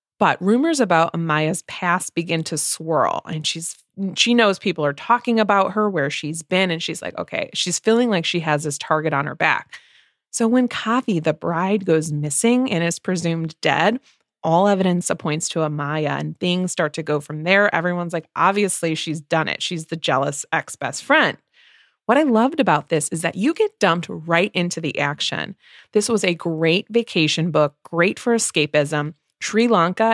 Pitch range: 160-215 Hz